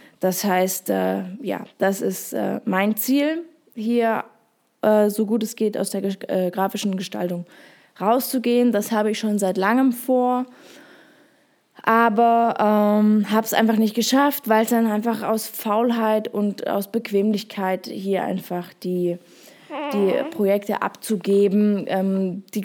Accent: German